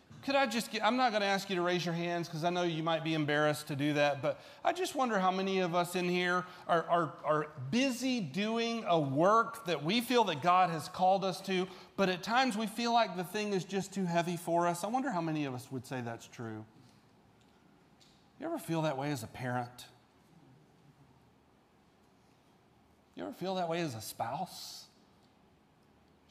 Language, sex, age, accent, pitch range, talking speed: English, male, 40-59, American, 155-195 Hz, 195 wpm